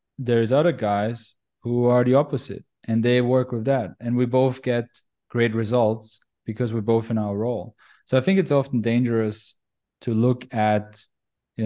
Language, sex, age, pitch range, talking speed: English, male, 20-39, 110-130 Hz, 175 wpm